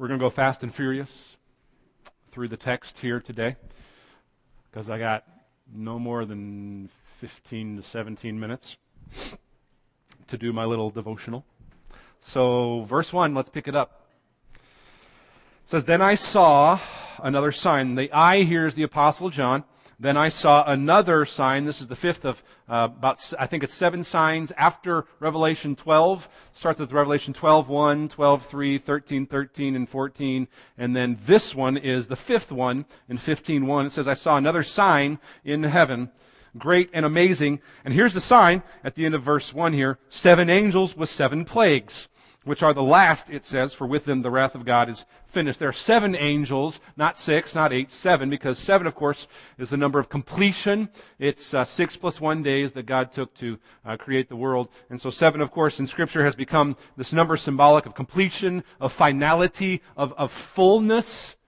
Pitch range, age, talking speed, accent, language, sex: 130-160 Hz, 40-59, 180 wpm, American, English, male